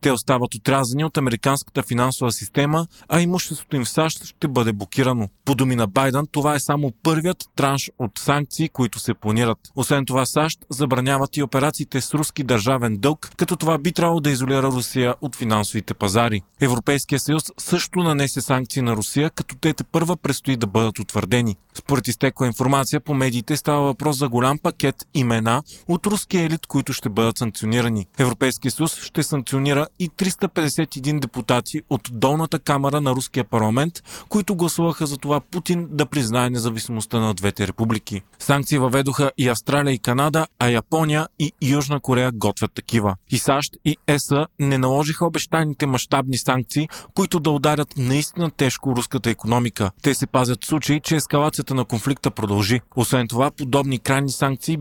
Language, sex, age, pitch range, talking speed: Bulgarian, male, 30-49, 125-150 Hz, 165 wpm